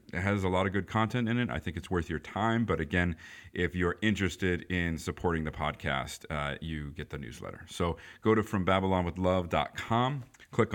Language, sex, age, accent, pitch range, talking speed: English, male, 40-59, American, 80-95 Hz, 190 wpm